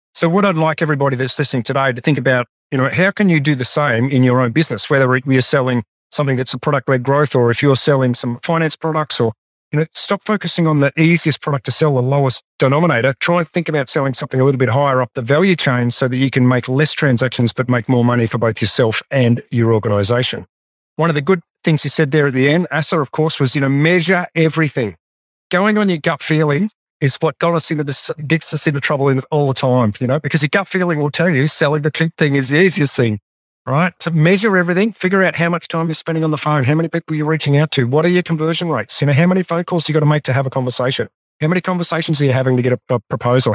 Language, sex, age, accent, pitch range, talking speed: English, male, 40-59, Australian, 130-165 Hz, 260 wpm